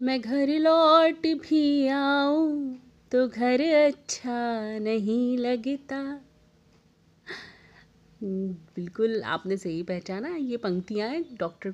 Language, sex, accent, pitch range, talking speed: Hindi, female, native, 190-255 Hz, 85 wpm